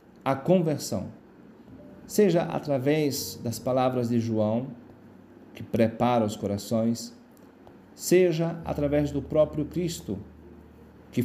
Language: Portuguese